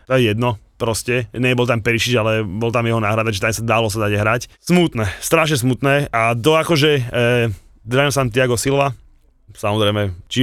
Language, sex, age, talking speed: Slovak, male, 20-39, 180 wpm